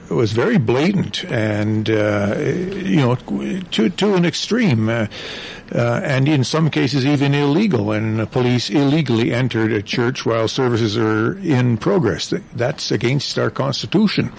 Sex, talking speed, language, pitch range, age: male, 150 wpm, English, 115-160 Hz, 60-79